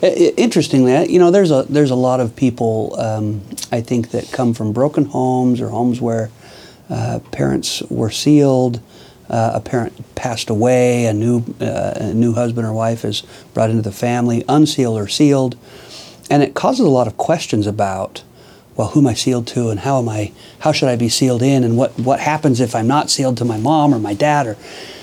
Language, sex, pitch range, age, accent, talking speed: English, male, 110-135 Hz, 50-69, American, 205 wpm